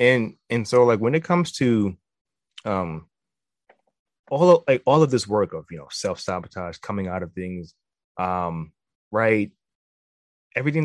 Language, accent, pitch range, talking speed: English, American, 95-140 Hz, 155 wpm